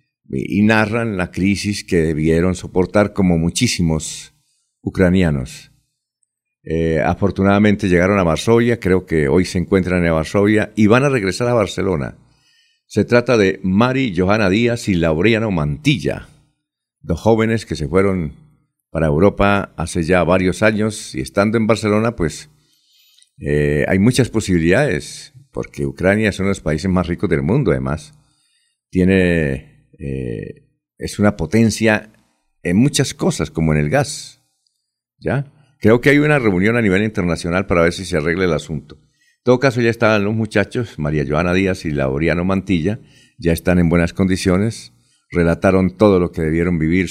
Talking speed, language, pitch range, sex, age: 155 wpm, Spanish, 80-110 Hz, male, 50-69